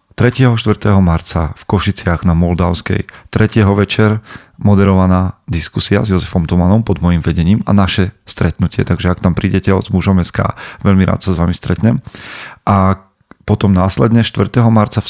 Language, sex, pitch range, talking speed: Slovak, male, 90-105 Hz, 150 wpm